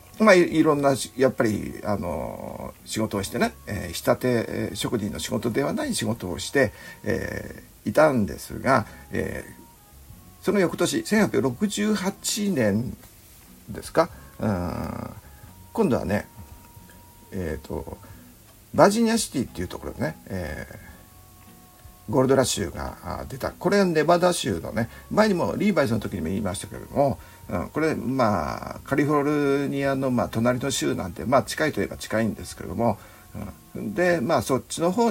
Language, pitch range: Japanese, 105-165 Hz